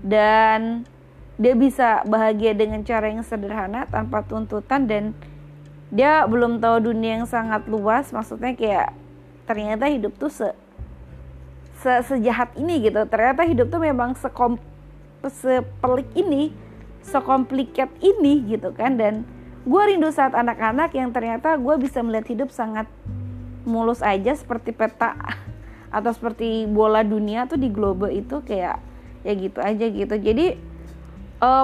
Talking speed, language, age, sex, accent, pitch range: 125 wpm, Indonesian, 20-39, female, native, 210-255 Hz